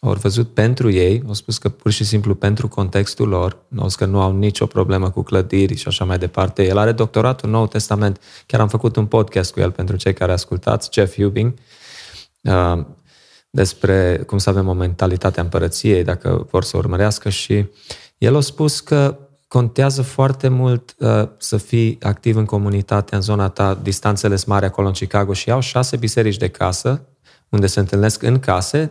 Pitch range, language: 95-115 Hz, Romanian